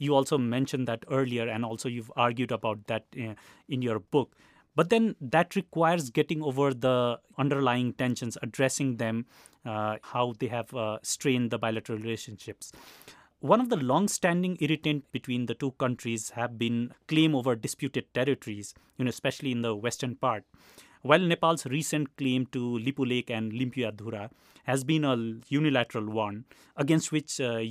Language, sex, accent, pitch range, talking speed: English, male, Indian, 115-145 Hz, 160 wpm